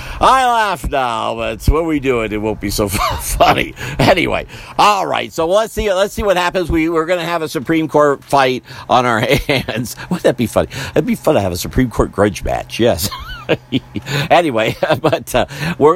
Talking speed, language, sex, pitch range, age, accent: 205 wpm, English, male, 100-150 Hz, 50-69, American